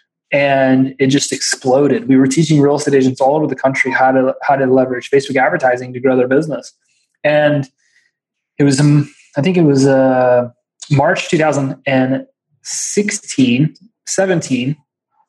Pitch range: 135-175 Hz